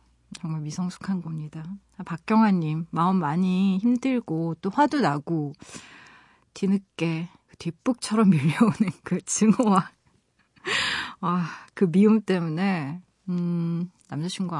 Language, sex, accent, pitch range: Korean, female, native, 160-215 Hz